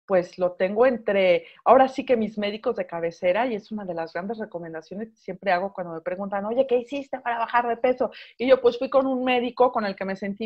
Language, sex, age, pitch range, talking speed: Spanish, female, 40-59, 200-265 Hz, 245 wpm